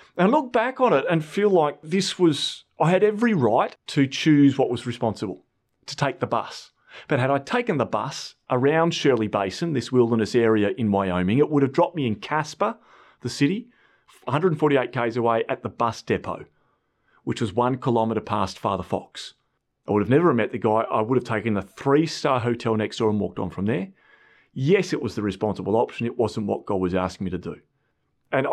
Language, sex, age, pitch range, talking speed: English, male, 30-49, 115-160 Hz, 205 wpm